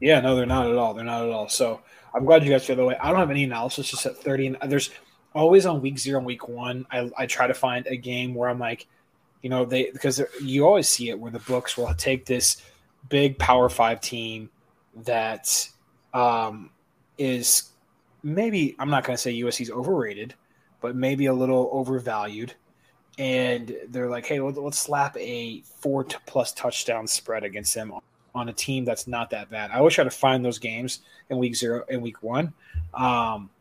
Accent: American